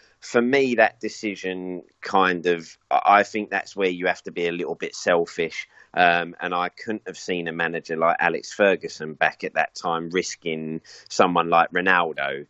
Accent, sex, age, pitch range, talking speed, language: British, male, 30-49, 85-105 Hz, 180 wpm, English